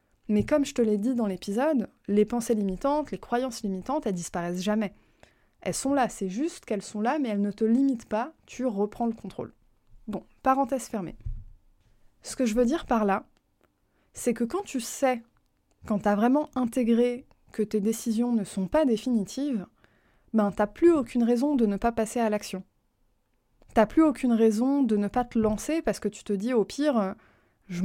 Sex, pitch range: female, 205-250 Hz